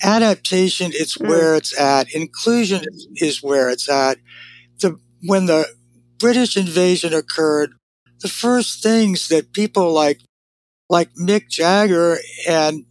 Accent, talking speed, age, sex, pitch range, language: American, 120 wpm, 60-79, male, 145-195 Hz, English